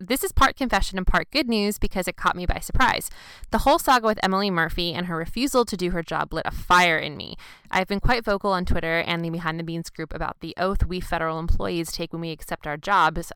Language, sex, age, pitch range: English, female, 20-39, 165-195 Hz